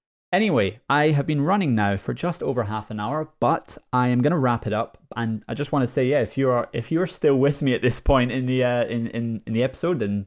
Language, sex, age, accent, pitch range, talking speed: English, male, 20-39, British, 105-130 Hz, 275 wpm